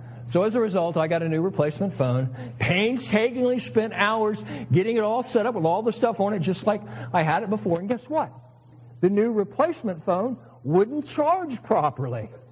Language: English